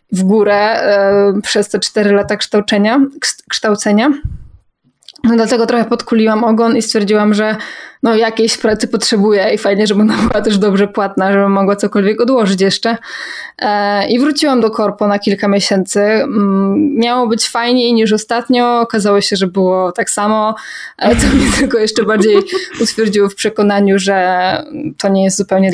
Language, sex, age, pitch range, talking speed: Polish, female, 20-39, 200-230 Hz, 145 wpm